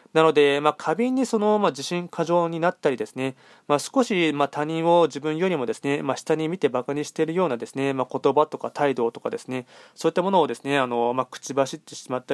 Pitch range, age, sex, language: 135-165 Hz, 20-39, male, Japanese